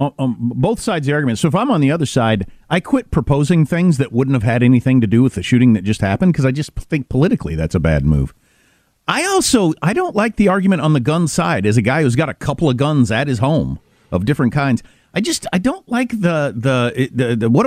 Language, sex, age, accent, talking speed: English, male, 50-69, American, 260 wpm